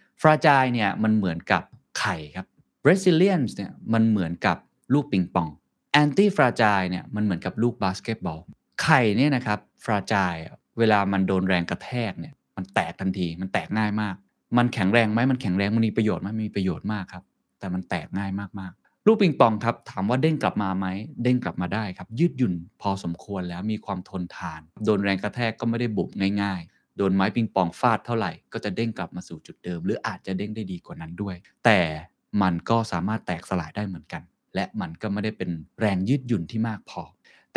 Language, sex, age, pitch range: Thai, male, 20-39, 90-115 Hz